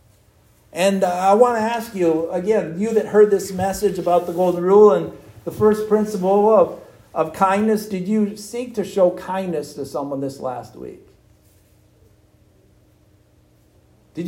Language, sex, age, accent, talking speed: English, male, 50-69, American, 145 wpm